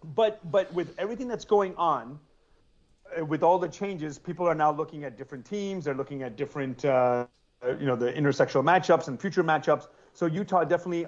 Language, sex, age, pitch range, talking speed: English, male, 30-49, 140-165 Hz, 185 wpm